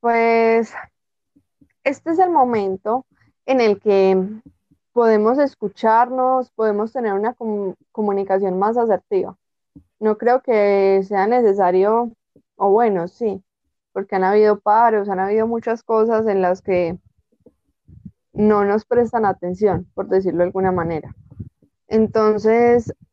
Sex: female